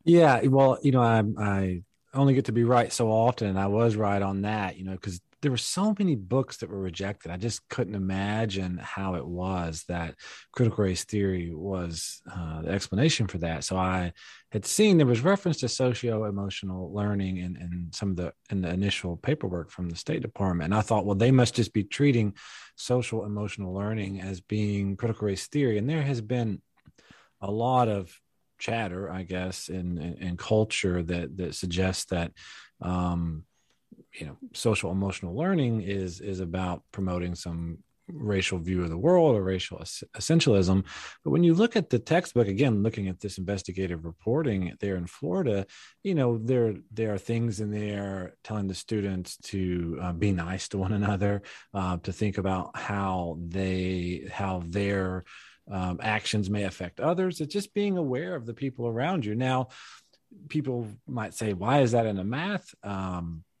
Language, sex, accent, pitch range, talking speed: English, male, American, 95-120 Hz, 180 wpm